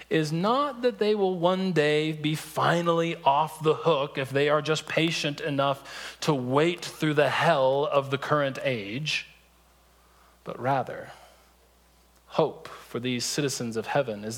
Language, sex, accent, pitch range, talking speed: English, male, American, 130-160 Hz, 150 wpm